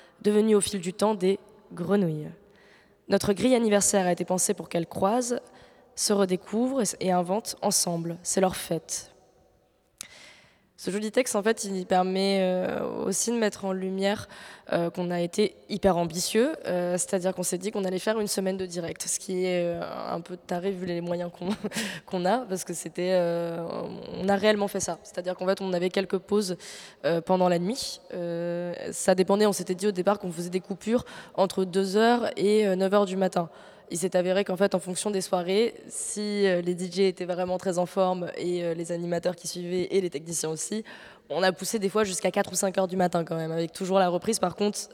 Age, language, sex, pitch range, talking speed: 20-39, French, female, 175-200 Hz, 190 wpm